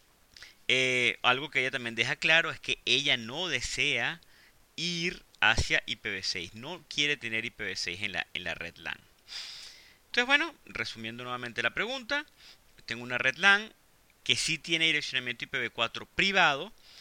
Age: 30-49